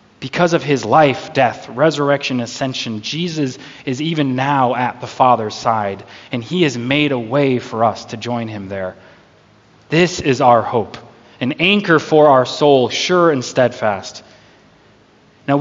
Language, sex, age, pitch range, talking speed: English, male, 20-39, 120-160 Hz, 155 wpm